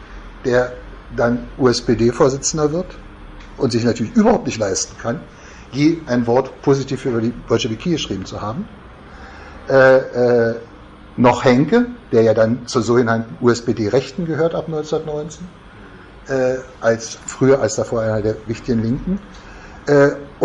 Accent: German